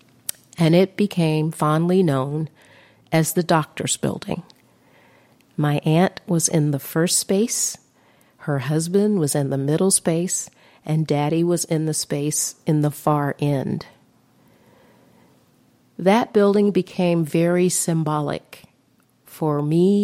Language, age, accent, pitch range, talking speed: English, 50-69, American, 150-185 Hz, 120 wpm